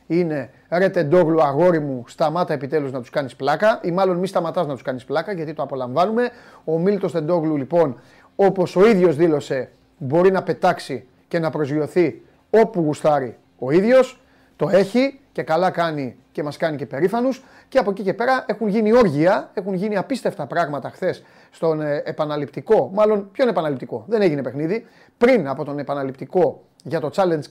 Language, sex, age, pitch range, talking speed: Greek, male, 30-49, 150-205 Hz, 170 wpm